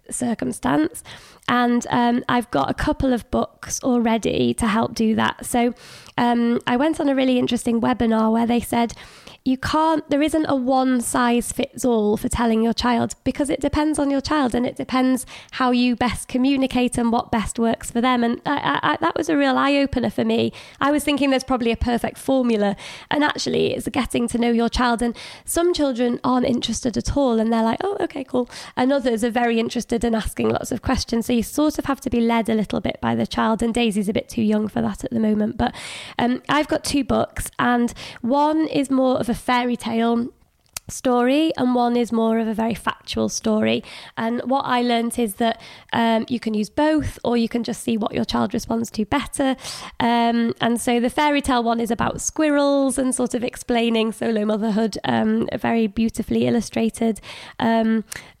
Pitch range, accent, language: 230-260 Hz, British, English